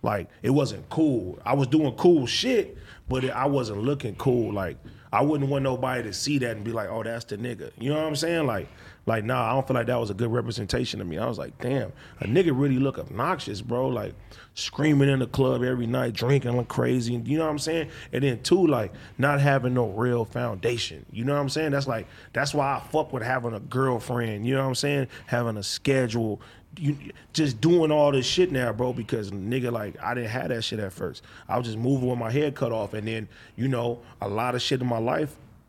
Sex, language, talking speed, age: male, English, 240 wpm, 30-49